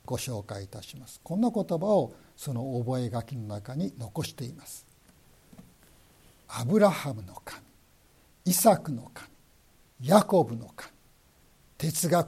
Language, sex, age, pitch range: Japanese, male, 60-79, 115-190 Hz